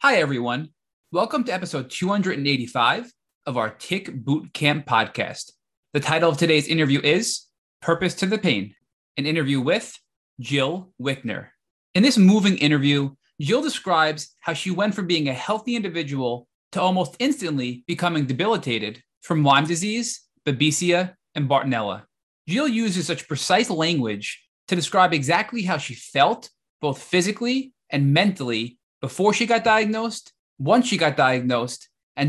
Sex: male